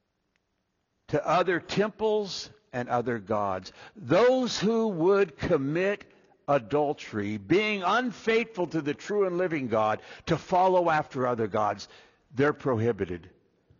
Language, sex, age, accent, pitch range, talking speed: English, male, 60-79, American, 130-205 Hz, 115 wpm